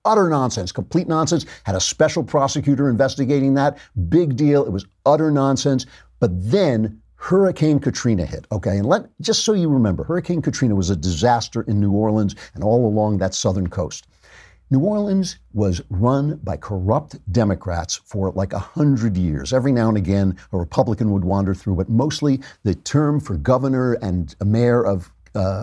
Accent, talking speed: American, 175 wpm